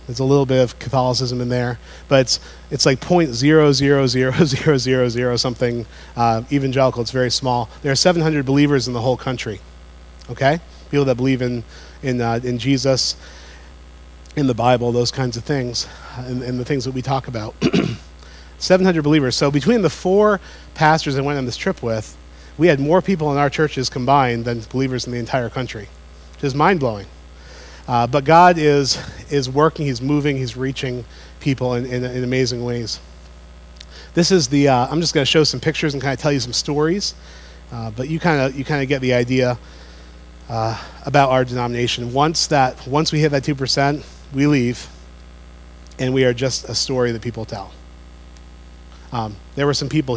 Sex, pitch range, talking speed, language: male, 110-145 Hz, 180 wpm, English